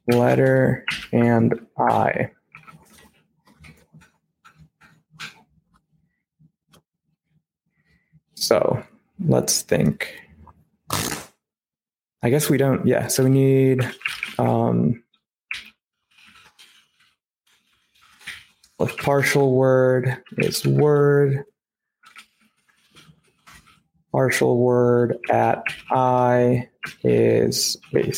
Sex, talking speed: male, 55 wpm